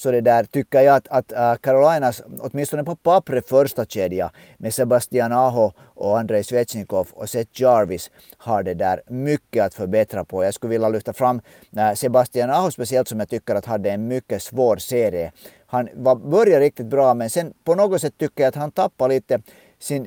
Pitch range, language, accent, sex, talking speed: 115-150 Hz, Swedish, Finnish, male, 185 wpm